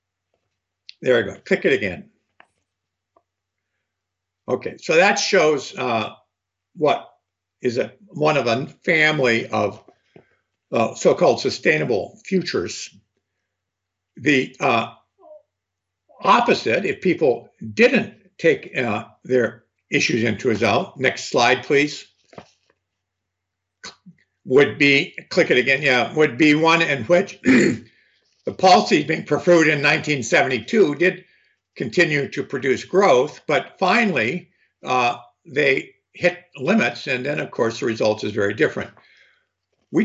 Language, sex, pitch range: English, male, 110-180 Hz